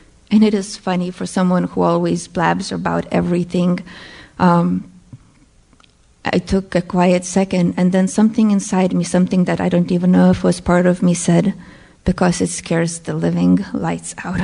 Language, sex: English, female